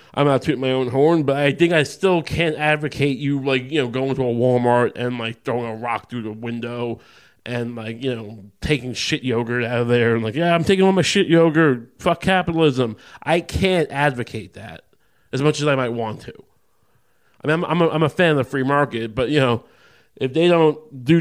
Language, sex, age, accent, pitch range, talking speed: English, male, 20-39, American, 120-155 Hz, 225 wpm